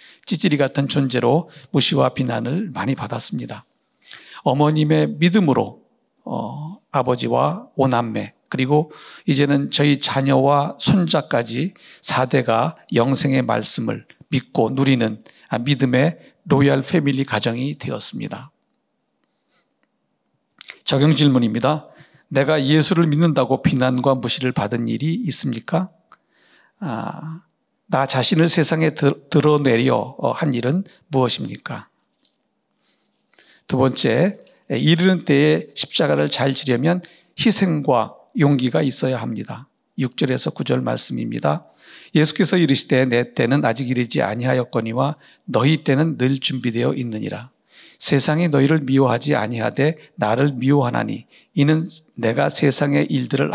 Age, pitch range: 60-79, 130-155 Hz